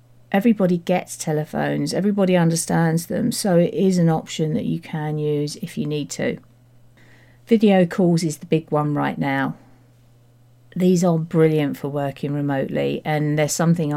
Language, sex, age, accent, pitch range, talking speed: English, female, 40-59, British, 140-165 Hz, 155 wpm